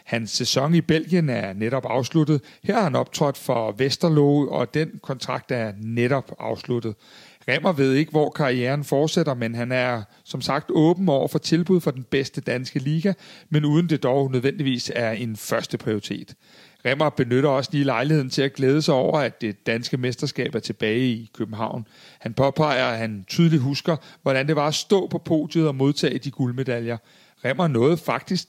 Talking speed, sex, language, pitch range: 180 wpm, male, Danish, 120-155 Hz